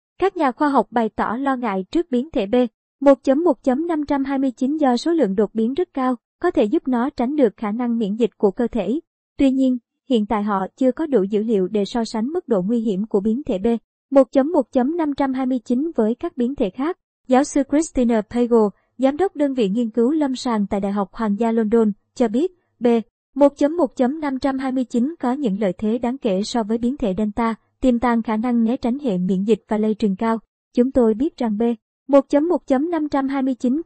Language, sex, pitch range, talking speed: Vietnamese, male, 220-275 Hz, 200 wpm